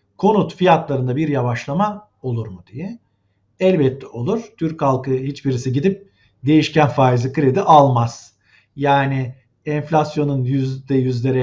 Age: 50-69